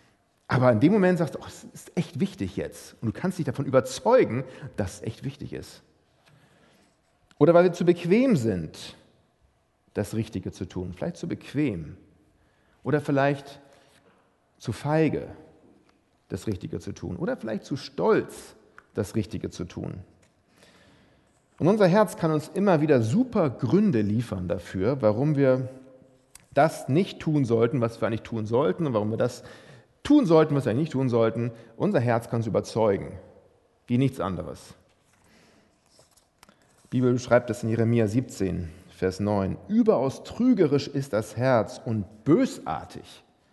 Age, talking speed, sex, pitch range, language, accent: 40-59, 150 wpm, male, 110-150 Hz, German, German